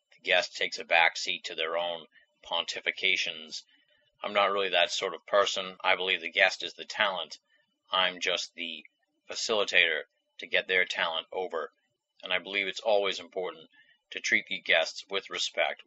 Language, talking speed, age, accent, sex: English, 165 wpm, 30-49, American, male